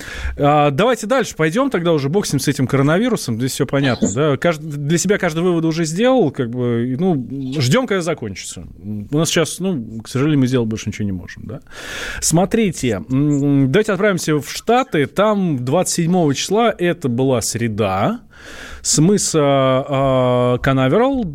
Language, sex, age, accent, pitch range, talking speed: Russian, male, 20-39, native, 130-180 Hz, 145 wpm